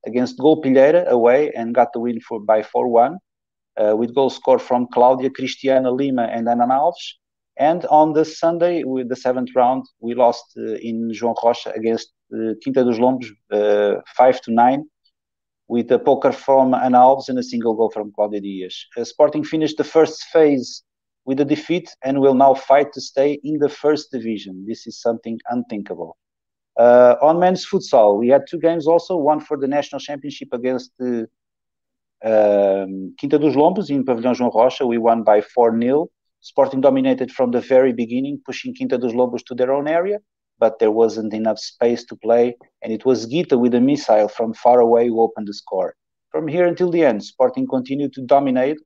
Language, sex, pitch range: English, male, 115-140 Hz